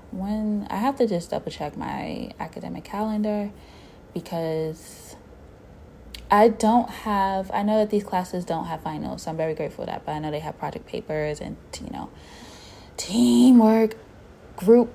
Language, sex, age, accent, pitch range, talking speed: English, female, 20-39, American, 160-195 Hz, 160 wpm